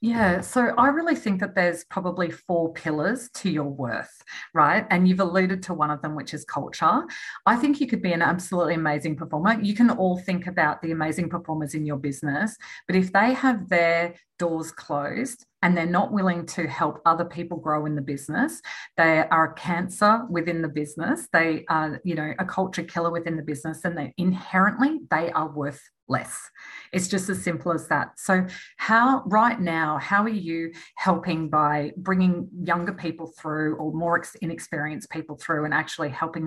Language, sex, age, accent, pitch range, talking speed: English, female, 40-59, Australian, 155-190 Hz, 190 wpm